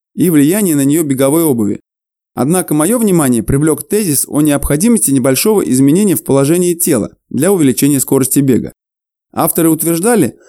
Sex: male